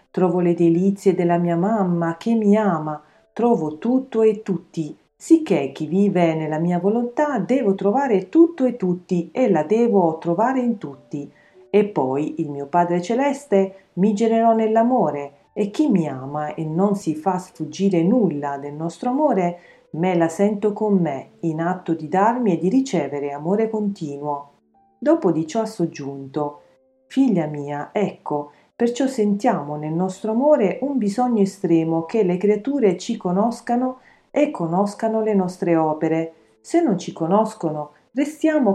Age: 40-59